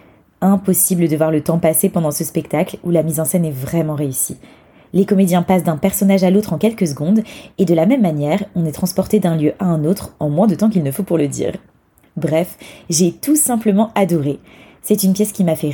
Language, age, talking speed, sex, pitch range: French, 20-39, 235 wpm, female, 155-200 Hz